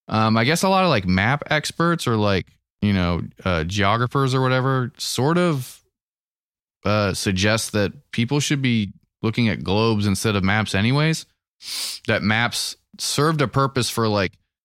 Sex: male